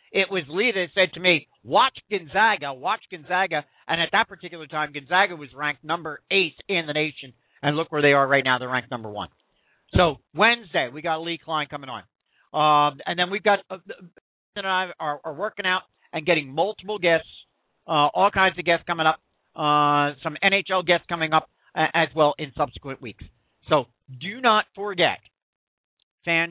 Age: 50-69